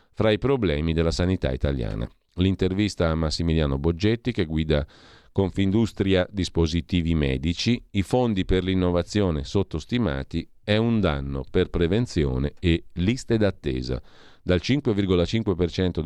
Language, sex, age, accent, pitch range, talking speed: Italian, male, 40-59, native, 80-105 Hz, 110 wpm